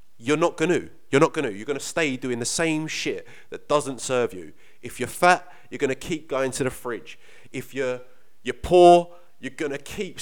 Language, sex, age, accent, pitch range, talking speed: English, male, 30-49, British, 125-165 Hz, 230 wpm